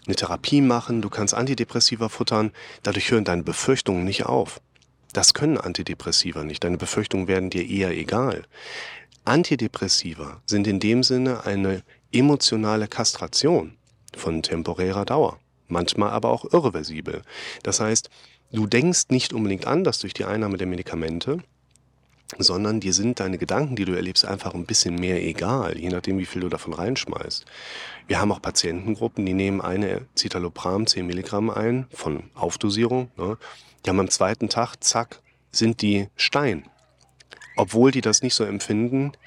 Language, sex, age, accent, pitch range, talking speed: German, male, 40-59, German, 95-115 Hz, 155 wpm